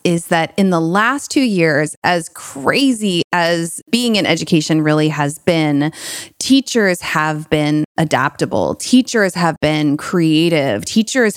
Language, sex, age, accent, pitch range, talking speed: English, female, 20-39, American, 155-180 Hz, 130 wpm